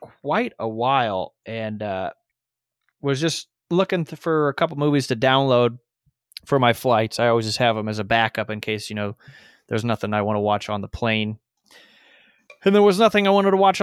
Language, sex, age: English, male, 20-39